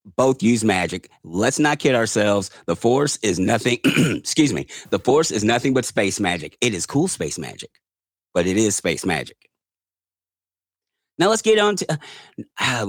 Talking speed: 170 wpm